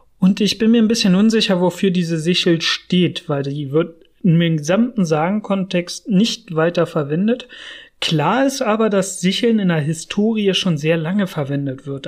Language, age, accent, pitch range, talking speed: German, 30-49, German, 155-205 Hz, 165 wpm